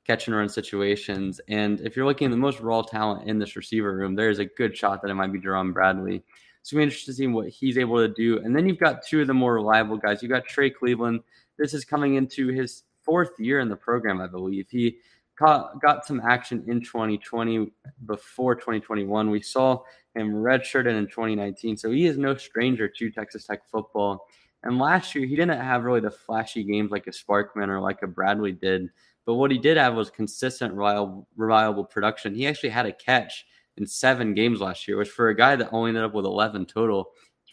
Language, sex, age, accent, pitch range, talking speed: English, male, 20-39, American, 105-125 Hz, 220 wpm